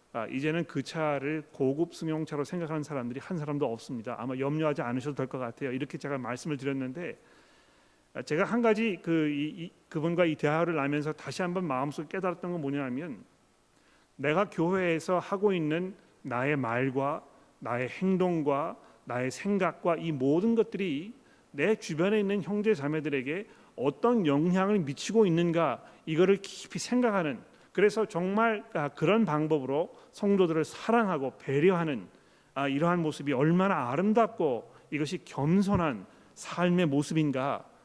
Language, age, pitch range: Korean, 40-59, 140-180 Hz